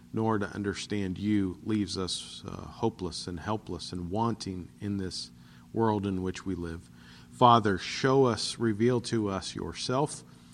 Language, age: English, 40-59